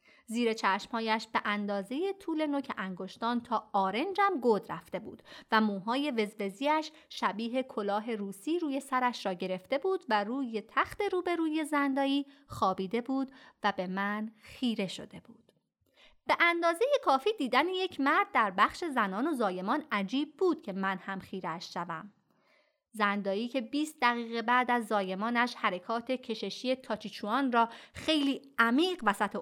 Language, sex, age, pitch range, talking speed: Persian, female, 30-49, 205-295 Hz, 140 wpm